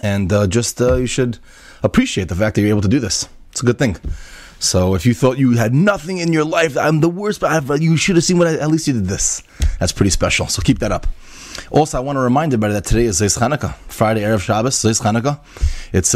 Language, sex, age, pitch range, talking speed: English, male, 30-49, 95-120 Hz, 255 wpm